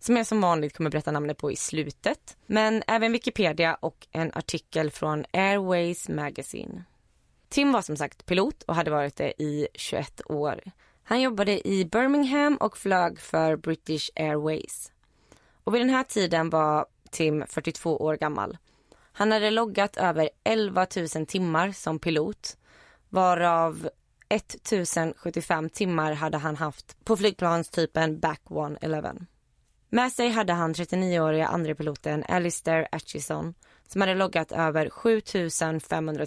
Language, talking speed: Swedish, 135 wpm